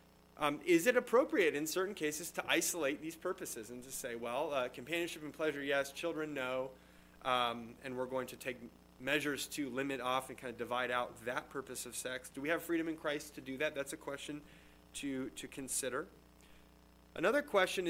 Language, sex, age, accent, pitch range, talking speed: English, male, 30-49, American, 115-150 Hz, 195 wpm